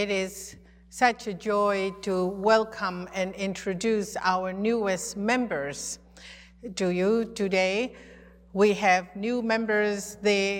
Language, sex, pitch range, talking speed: English, female, 170-210 Hz, 115 wpm